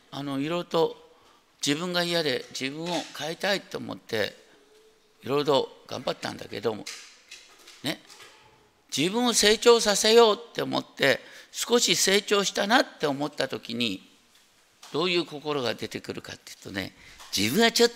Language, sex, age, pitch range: Japanese, male, 50-69, 145-220 Hz